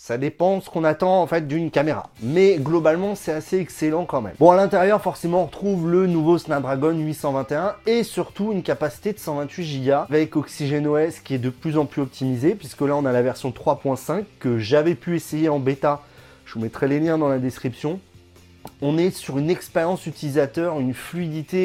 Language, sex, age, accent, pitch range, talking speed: French, male, 30-49, French, 140-185 Hz, 200 wpm